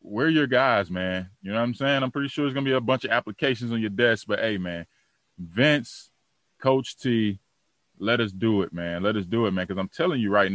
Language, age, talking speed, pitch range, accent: English, 20-39, 245 wpm, 95-120 Hz, American